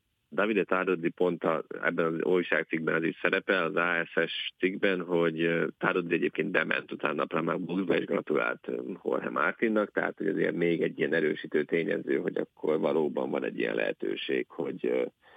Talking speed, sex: 160 wpm, male